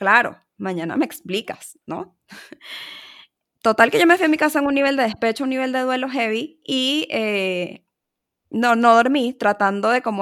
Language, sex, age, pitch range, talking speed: Spanish, female, 20-39, 205-255 Hz, 180 wpm